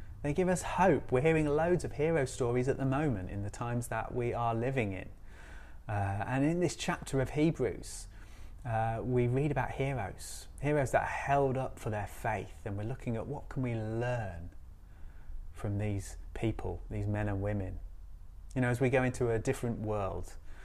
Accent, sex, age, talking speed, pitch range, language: British, male, 30-49, 190 wpm, 100-130 Hz, English